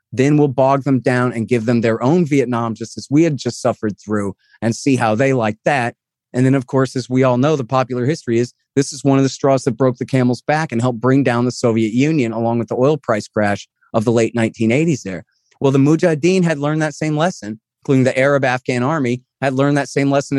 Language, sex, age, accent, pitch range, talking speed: English, male, 30-49, American, 120-150 Hz, 245 wpm